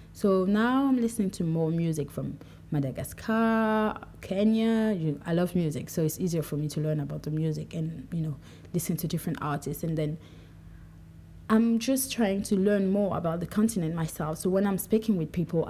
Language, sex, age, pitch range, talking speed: English, female, 30-49, 155-200 Hz, 185 wpm